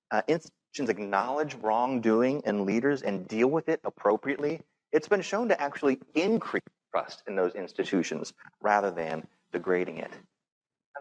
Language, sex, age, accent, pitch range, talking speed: English, male, 40-59, American, 100-145 Hz, 140 wpm